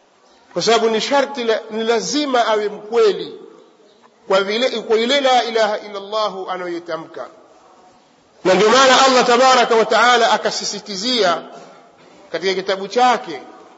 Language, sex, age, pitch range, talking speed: Swahili, male, 50-69, 210-265 Hz, 115 wpm